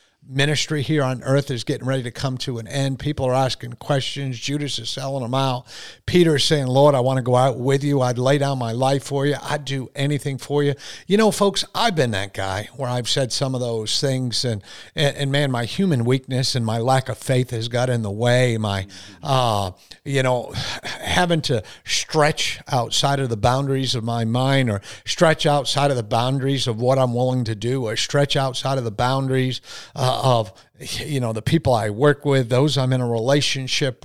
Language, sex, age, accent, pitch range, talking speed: English, male, 50-69, American, 120-145 Hz, 215 wpm